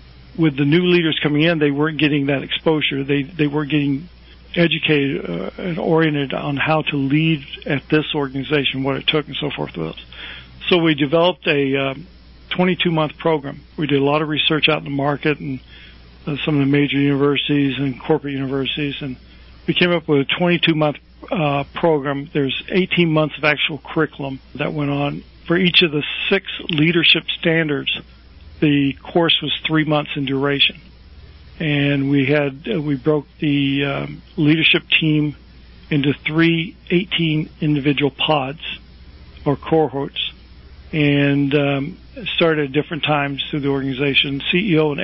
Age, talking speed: 50-69, 160 wpm